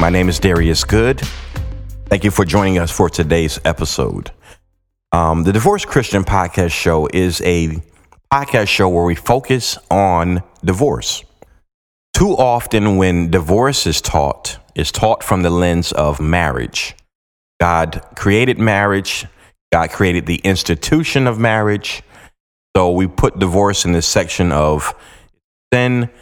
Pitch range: 85-105 Hz